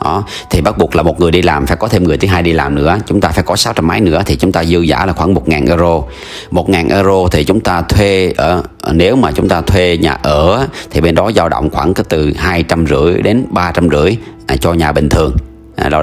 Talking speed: 250 wpm